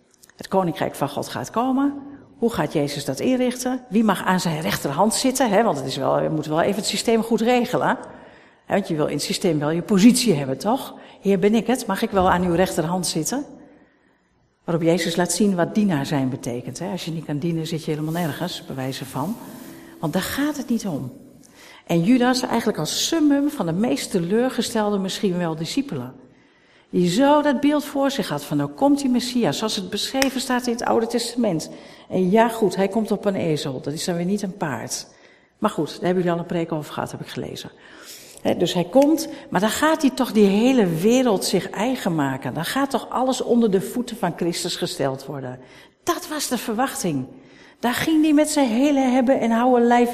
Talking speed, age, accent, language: 210 wpm, 50-69, Dutch, Dutch